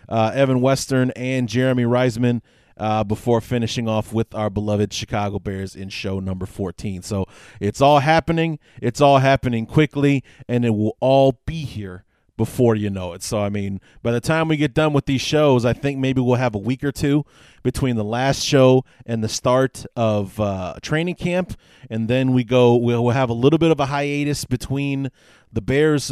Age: 30-49